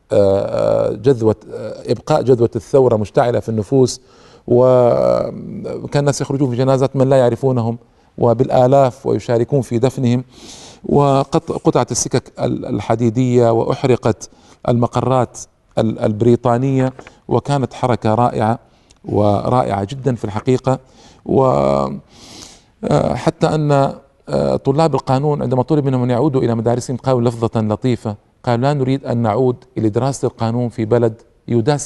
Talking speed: 105 wpm